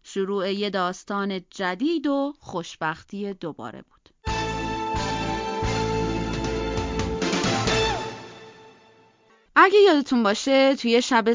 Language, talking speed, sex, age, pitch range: Persian, 70 wpm, female, 30-49, 180-275 Hz